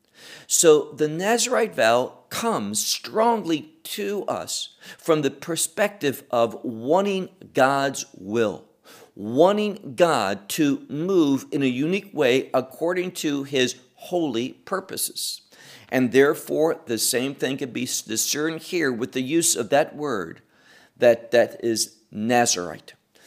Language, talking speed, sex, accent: English, 120 wpm, male, American